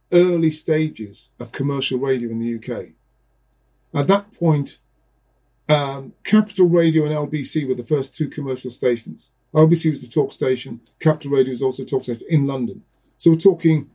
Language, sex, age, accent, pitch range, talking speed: English, male, 40-59, British, 130-170 Hz, 170 wpm